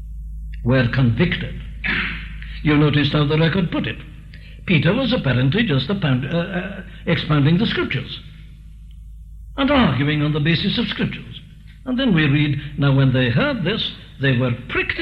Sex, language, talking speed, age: male, English, 145 wpm, 60-79